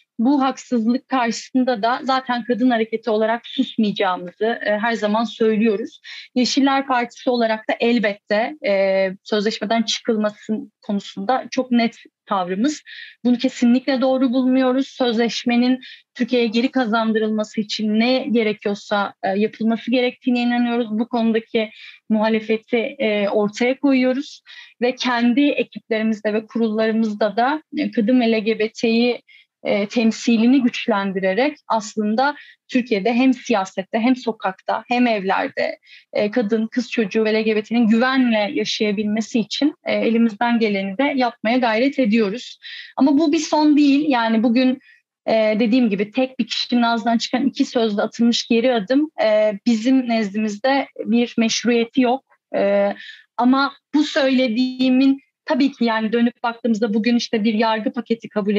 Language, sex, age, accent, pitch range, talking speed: Turkish, female, 10-29, native, 220-255 Hz, 120 wpm